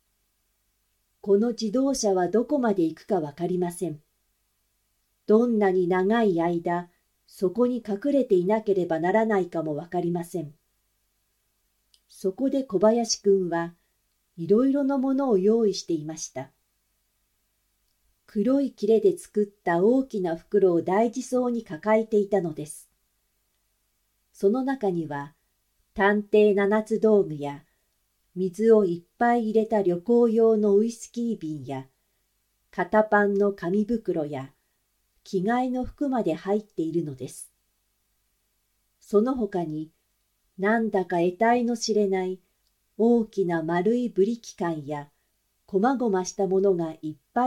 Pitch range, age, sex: 135-220 Hz, 50-69, female